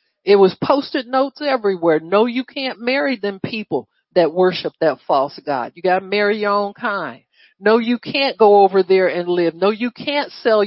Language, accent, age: English, American, 50-69